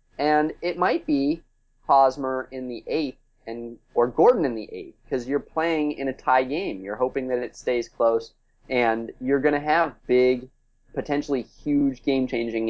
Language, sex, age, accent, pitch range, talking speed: English, male, 20-39, American, 115-140 Hz, 175 wpm